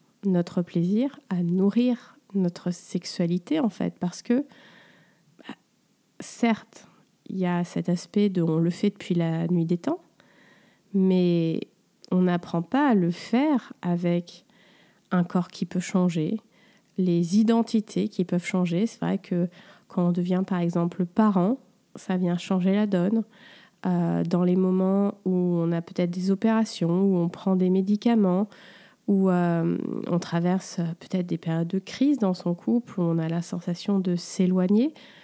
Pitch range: 175-210 Hz